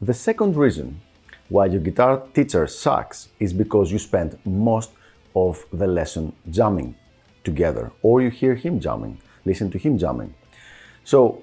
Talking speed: 145 wpm